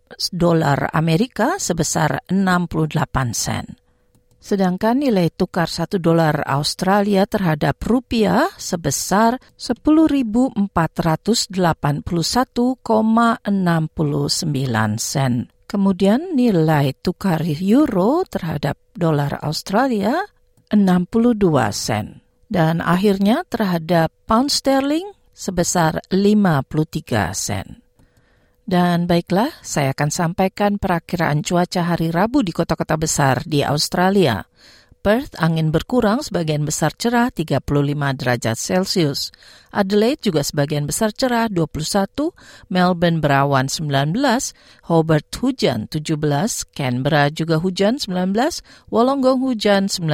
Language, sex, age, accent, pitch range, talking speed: Indonesian, female, 50-69, native, 160-220 Hz, 90 wpm